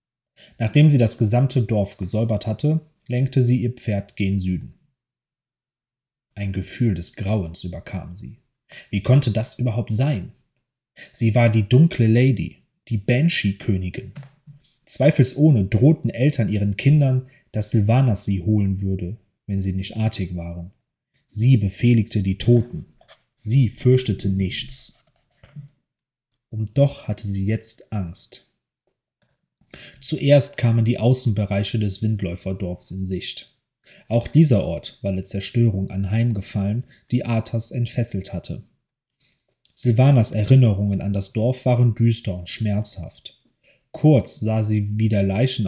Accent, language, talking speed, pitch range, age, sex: German, German, 120 wpm, 100-130 Hz, 30-49, male